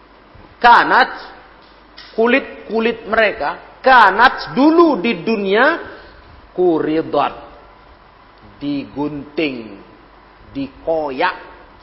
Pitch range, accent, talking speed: 130-175 Hz, native, 55 wpm